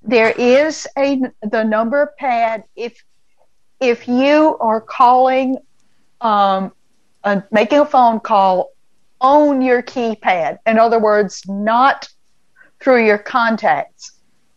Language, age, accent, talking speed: English, 60-79, American, 105 wpm